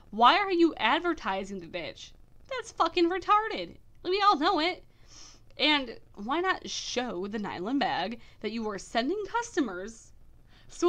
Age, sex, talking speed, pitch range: 20-39, female, 145 wpm, 195-320 Hz